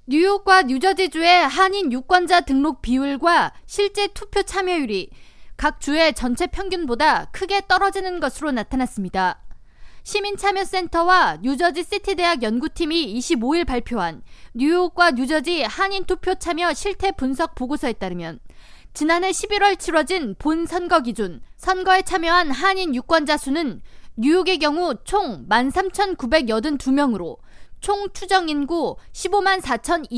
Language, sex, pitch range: Korean, female, 260-370 Hz